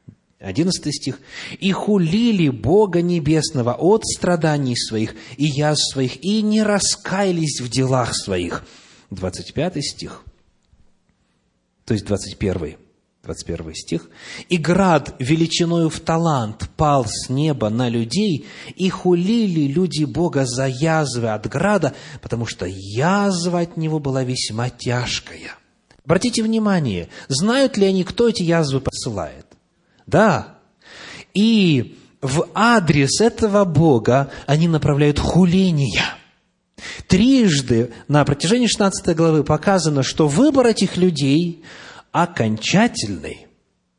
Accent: native